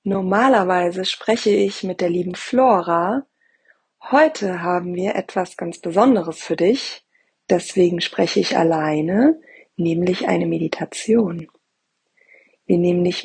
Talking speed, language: 115 wpm, German